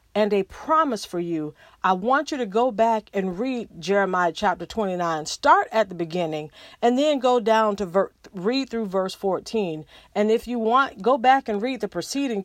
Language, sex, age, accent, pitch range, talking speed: English, female, 40-59, American, 195-265 Hz, 190 wpm